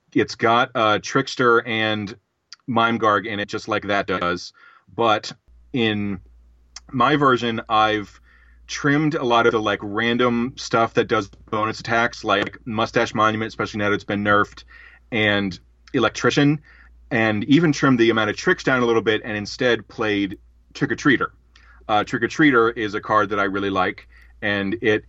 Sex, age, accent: male, 30-49, American